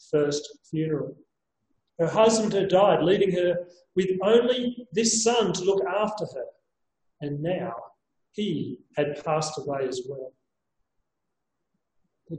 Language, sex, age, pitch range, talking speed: English, male, 40-59, 170-225 Hz, 120 wpm